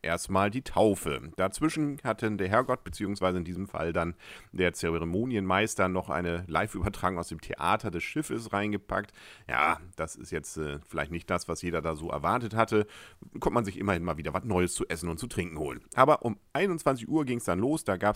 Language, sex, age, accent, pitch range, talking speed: German, male, 40-59, German, 85-110 Hz, 200 wpm